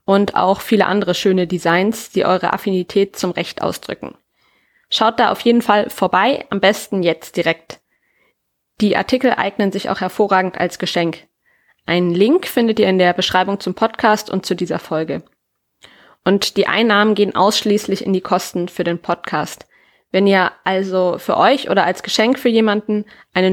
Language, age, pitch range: German, 20-39, 180-215 Hz